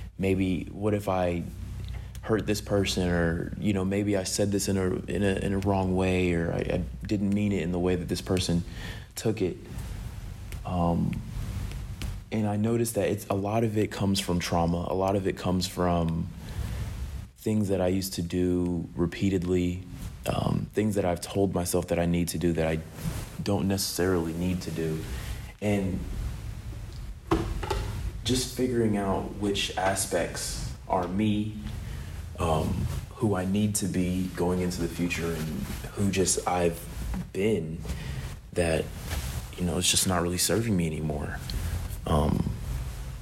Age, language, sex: 30-49, English, male